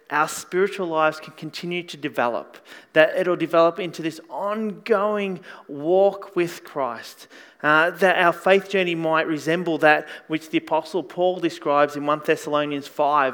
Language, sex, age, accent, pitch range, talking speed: English, male, 30-49, Australian, 155-210 Hz, 155 wpm